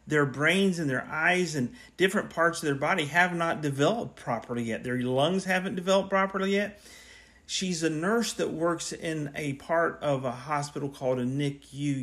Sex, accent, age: male, American, 40-59